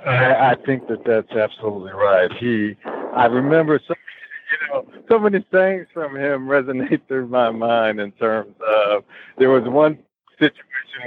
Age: 60-79